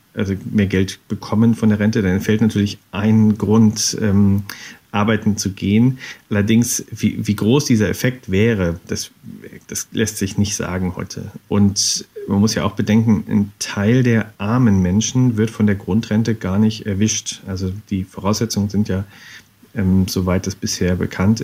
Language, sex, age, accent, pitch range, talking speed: German, male, 40-59, German, 95-115 Hz, 160 wpm